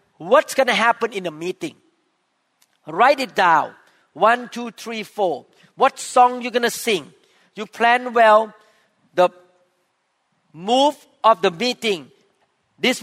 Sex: male